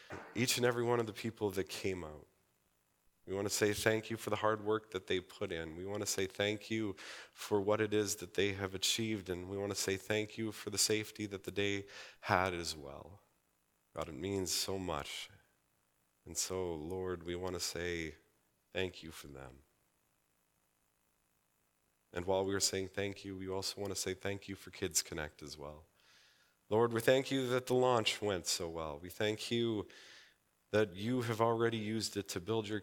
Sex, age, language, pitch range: male, 40-59, English, 90-105 Hz